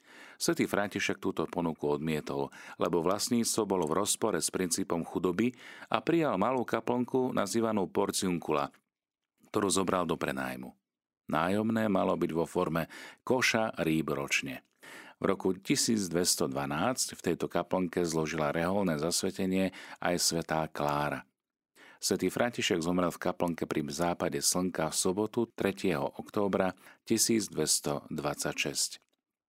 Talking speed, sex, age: 115 wpm, male, 40-59